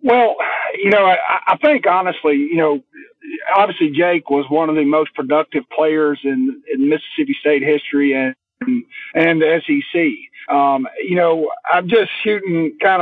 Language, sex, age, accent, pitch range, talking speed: English, male, 40-59, American, 150-200 Hz, 155 wpm